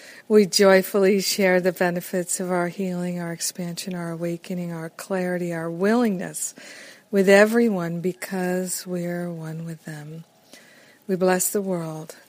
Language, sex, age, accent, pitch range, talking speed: English, female, 50-69, American, 175-210 Hz, 135 wpm